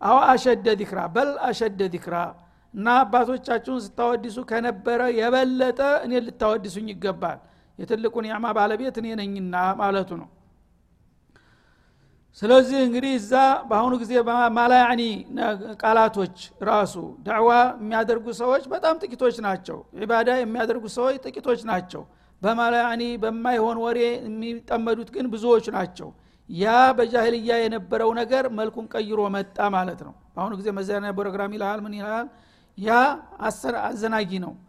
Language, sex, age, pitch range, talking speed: Amharic, male, 60-79, 215-250 Hz, 110 wpm